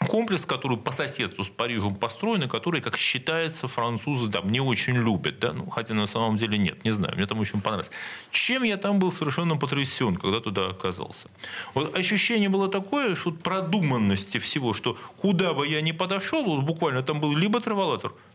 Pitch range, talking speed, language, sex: 115-175 Hz, 190 wpm, Russian, male